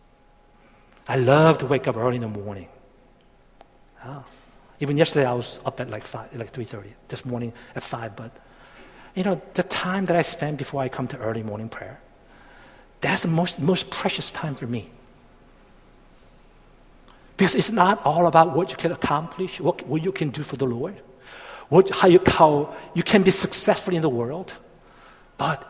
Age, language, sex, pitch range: 60-79, Korean, male, 120-175 Hz